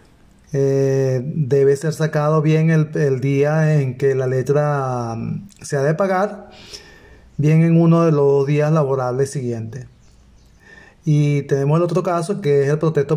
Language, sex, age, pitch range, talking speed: Spanish, male, 30-49, 135-165 Hz, 155 wpm